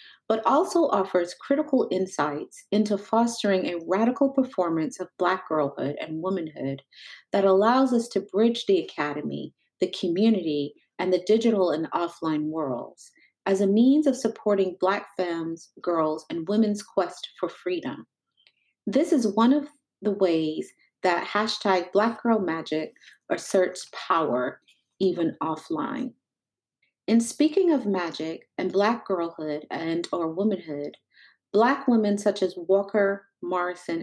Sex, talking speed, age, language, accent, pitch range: female, 130 wpm, 40-59, English, American, 180-230 Hz